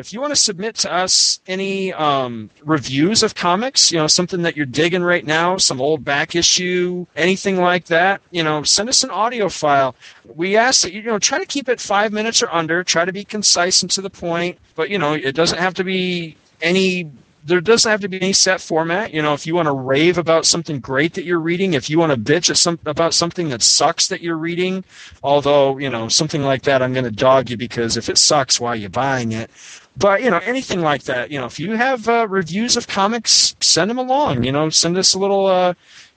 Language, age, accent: English, 40-59, American